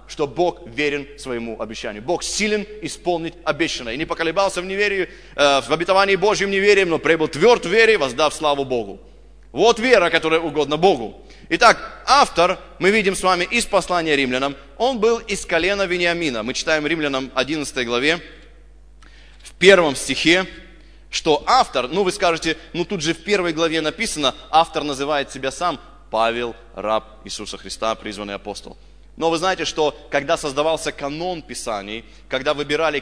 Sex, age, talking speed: male, 30-49, 155 wpm